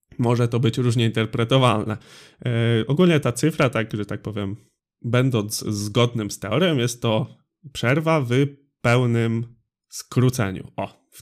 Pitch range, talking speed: 110-155 Hz, 135 wpm